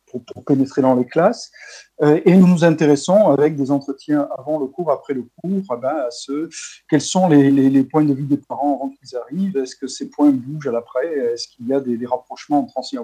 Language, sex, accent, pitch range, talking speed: French, male, French, 135-175 Hz, 245 wpm